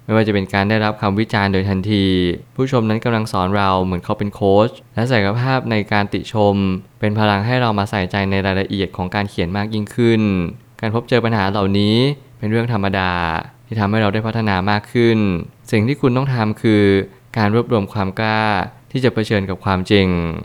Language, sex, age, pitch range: Thai, male, 20-39, 95-115 Hz